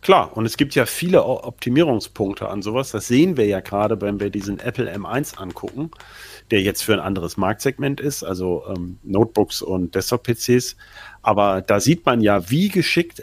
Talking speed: 175 wpm